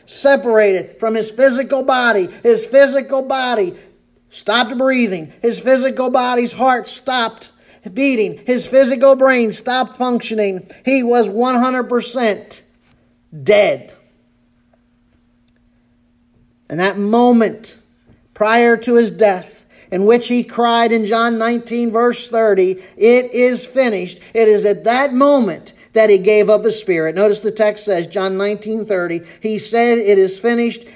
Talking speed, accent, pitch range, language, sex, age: 130 wpm, American, 190-250 Hz, English, male, 50-69